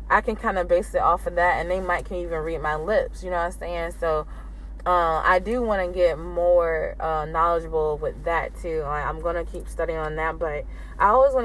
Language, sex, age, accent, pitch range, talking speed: English, female, 20-39, American, 170-205 Hz, 245 wpm